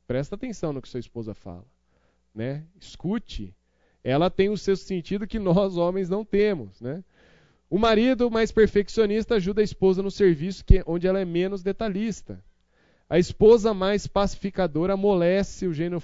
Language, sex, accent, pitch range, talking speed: Portuguese, male, Brazilian, 130-190 Hz, 155 wpm